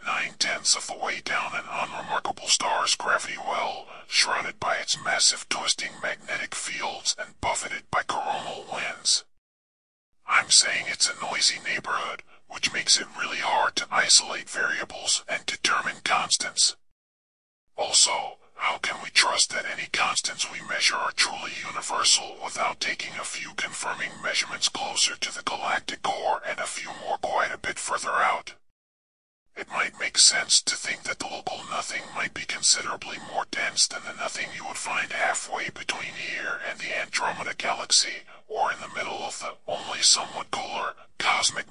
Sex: female